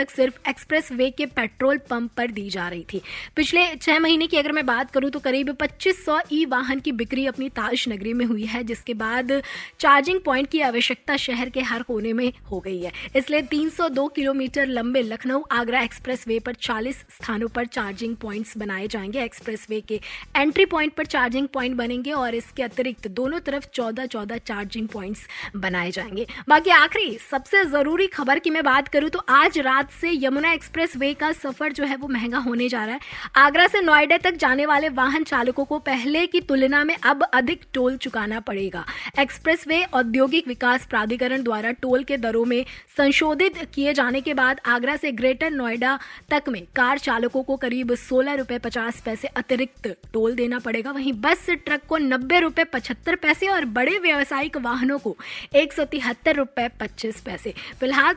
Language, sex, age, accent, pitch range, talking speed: Hindi, female, 20-39, native, 240-300 Hz, 150 wpm